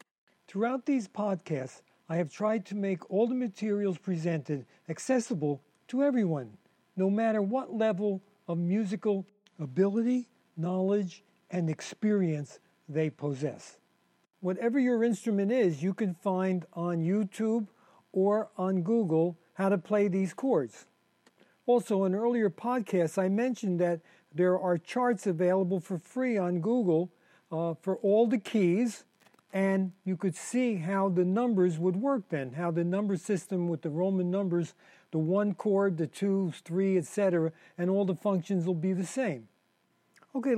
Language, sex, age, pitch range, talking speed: English, male, 50-69, 170-215 Hz, 145 wpm